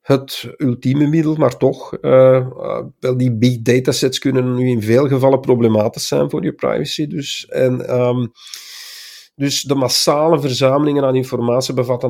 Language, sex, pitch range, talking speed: Dutch, male, 120-155 Hz, 150 wpm